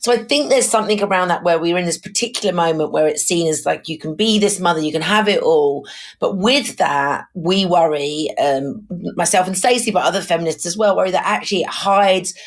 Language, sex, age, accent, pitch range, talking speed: English, female, 40-59, British, 160-210 Hz, 225 wpm